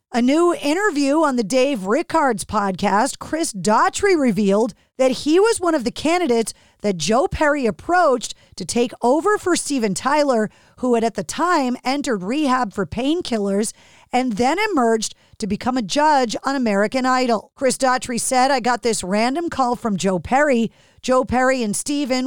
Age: 40-59